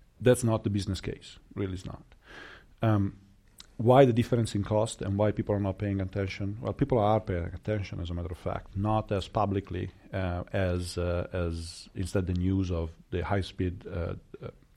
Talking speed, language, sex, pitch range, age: 190 wpm, English, male, 90-105 Hz, 40-59